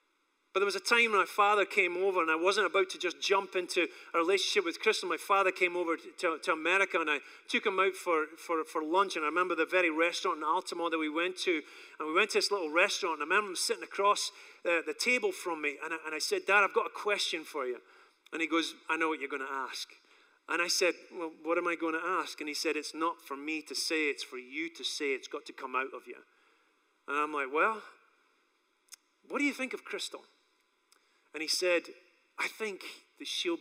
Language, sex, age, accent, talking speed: English, male, 30-49, British, 240 wpm